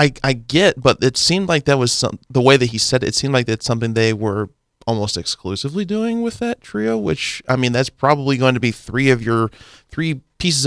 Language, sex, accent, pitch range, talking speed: English, male, American, 110-140 Hz, 235 wpm